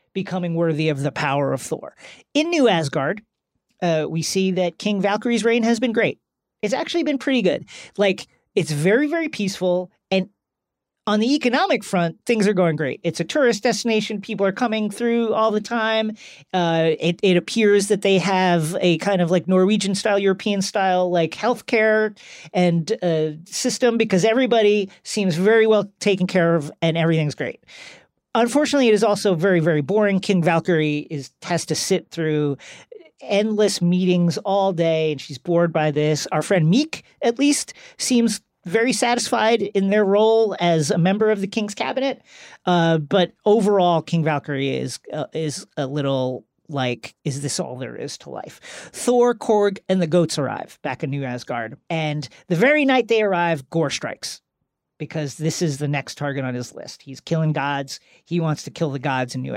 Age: 40-59